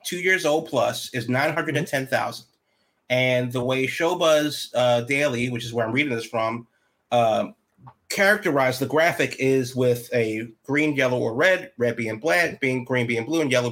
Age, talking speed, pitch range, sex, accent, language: 30-49, 170 wpm, 125-160 Hz, male, American, English